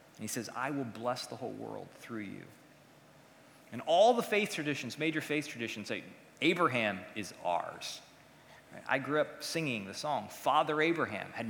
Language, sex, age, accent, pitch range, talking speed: English, male, 30-49, American, 140-200 Hz, 165 wpm